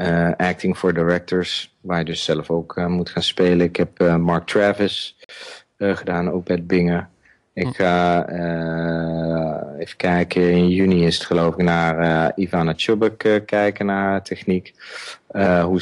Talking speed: 170 wpm